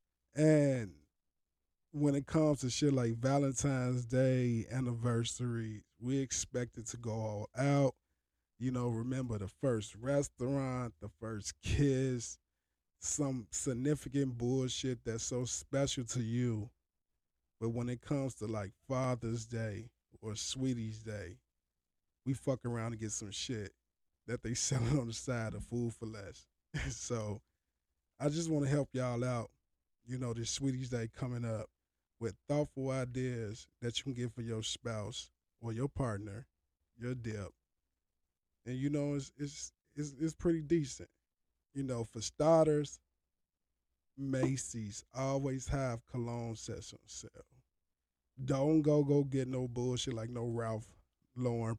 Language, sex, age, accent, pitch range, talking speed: English, male, 20-39, American, 105-135 Hz, 140 wpm